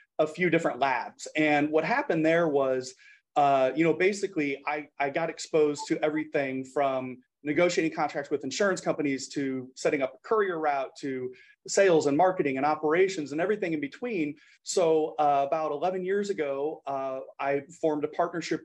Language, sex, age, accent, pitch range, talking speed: English, male, 30-49, American, 135-170 Hz, 165 wpm